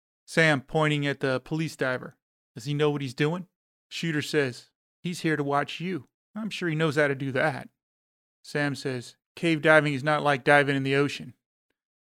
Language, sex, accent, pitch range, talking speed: English, male, American, 130-155 Hz, 195 wpm